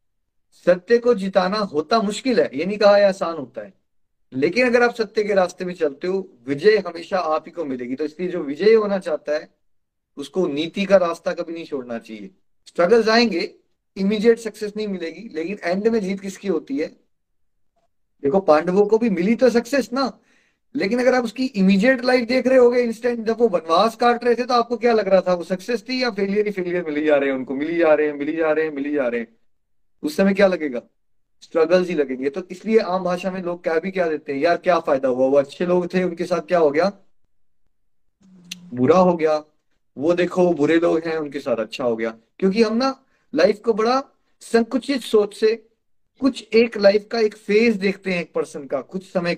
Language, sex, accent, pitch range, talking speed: Hindi, male, native, 160-220 Hz, 165 wpm